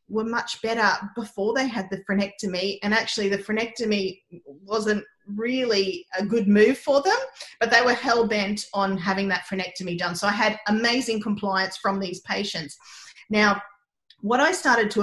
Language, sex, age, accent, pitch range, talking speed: English, female, 30-49, Australian, 200-245 Hz, 165 wpm